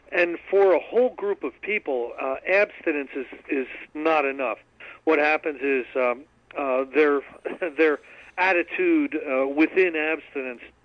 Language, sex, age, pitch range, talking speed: English, male, 50-69, 130-170 Hz, 135 wpm